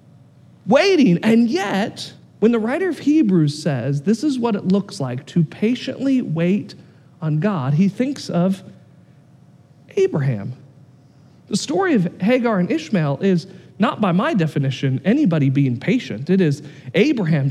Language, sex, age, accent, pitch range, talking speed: English, male, 40-59, American, 150-245 Hz, 140 wpm